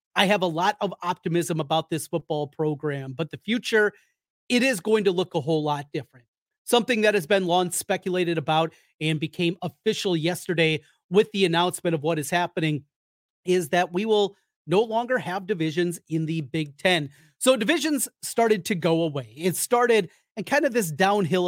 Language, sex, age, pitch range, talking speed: English, male, 30-49, 160-190 Hz, 180 wpm